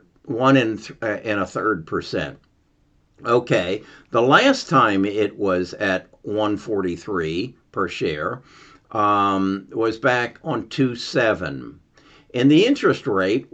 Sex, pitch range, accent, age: male, 105-140 Hz, American, 60-79